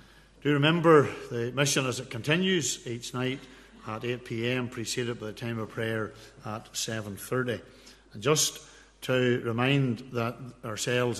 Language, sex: English, male